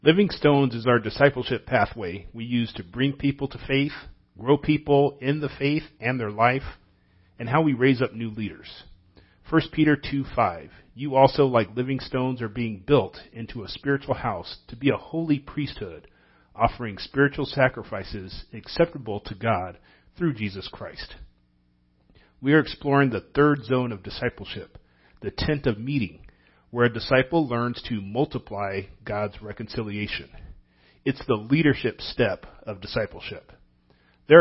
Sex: male